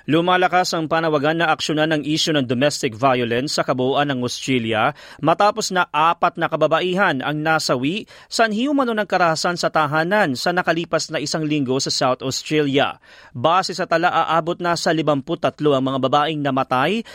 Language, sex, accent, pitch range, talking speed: Filipino, male, native, 150-200 Hz, 160 wpm